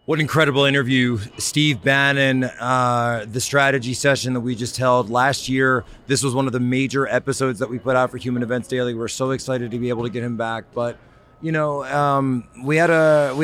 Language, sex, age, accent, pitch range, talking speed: English, male, 30-49, American, 115-140 Hz, 220 wpm